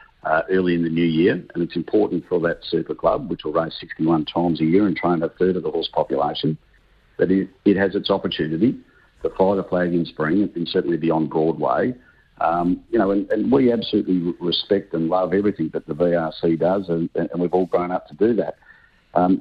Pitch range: 85-95 Hz